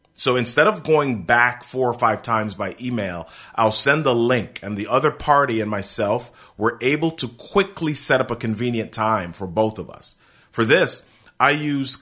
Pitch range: 115-170 Hz